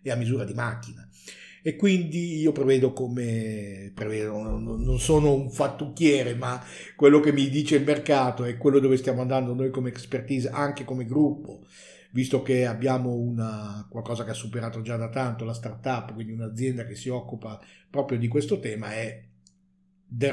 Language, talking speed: Italian, 170 wpm